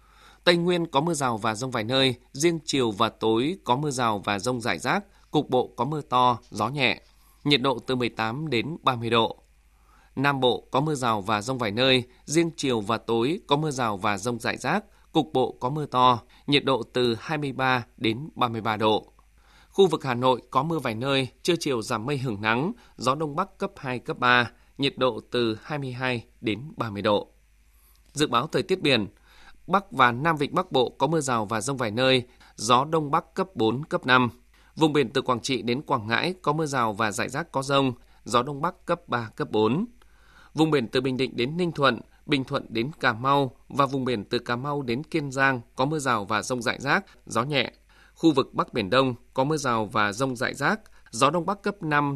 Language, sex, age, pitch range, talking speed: Vietnamese, male, 20-39, 115-150 Hz, 220 wpm